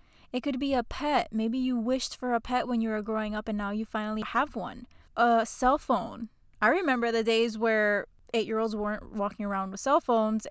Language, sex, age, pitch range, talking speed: English, female, 10-29, 215-250 Hz, 210 wpm